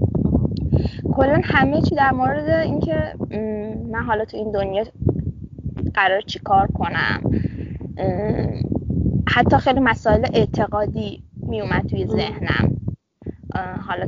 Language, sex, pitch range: Persian, female, 210-260 Hz